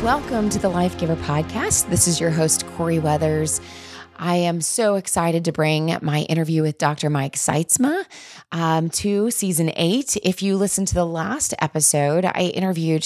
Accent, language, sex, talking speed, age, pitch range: American, English, female, 170 wpm, 20-39, 155-195 Hz